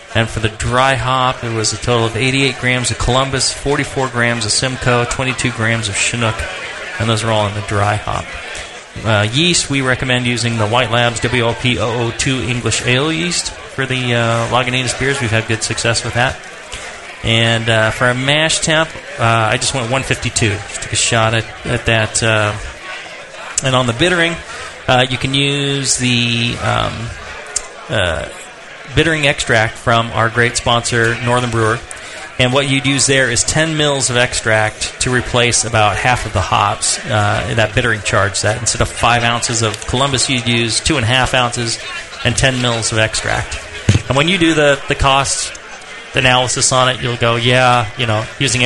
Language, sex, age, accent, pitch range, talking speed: English, male, 30-49, American, 110-130 Hz, 180 wpm